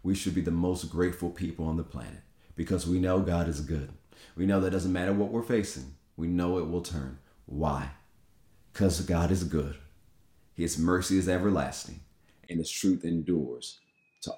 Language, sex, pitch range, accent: English, male, 80-95 Hz, American